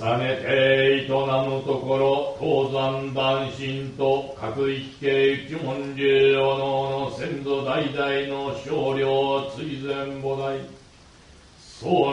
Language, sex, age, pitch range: Japanese, male, 60-79, 135-140 Hz